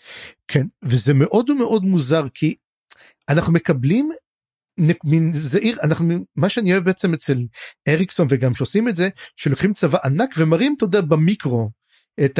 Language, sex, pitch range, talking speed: Hebrew, male, 140-190 Hz, 135 wpm